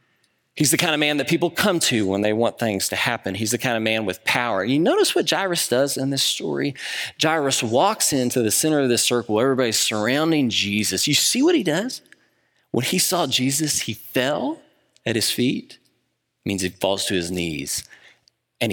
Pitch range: 110-145 Hz